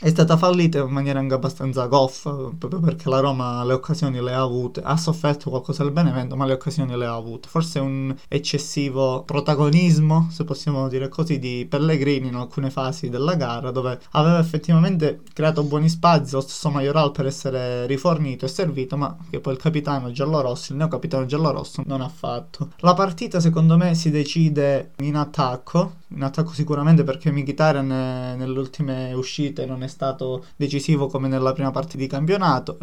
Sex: male